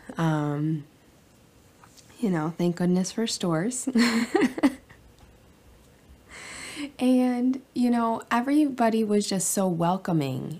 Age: 20-39